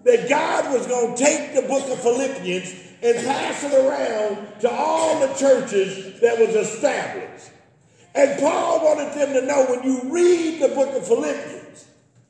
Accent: American